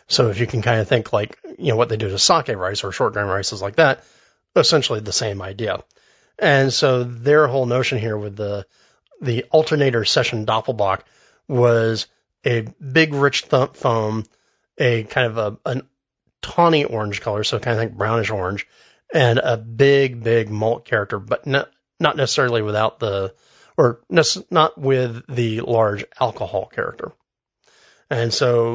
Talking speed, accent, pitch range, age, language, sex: 170 wpm, American, 115-135 Hz, 30-49, English, male